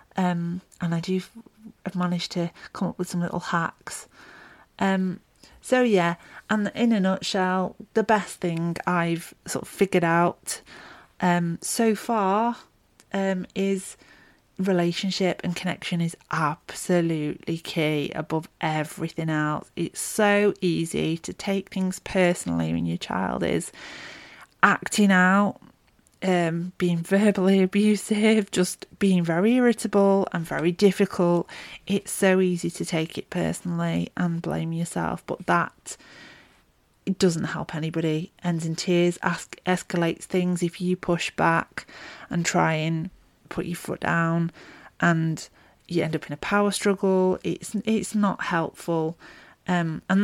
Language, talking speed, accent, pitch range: English, 135 wpm, British, 170-195 Hz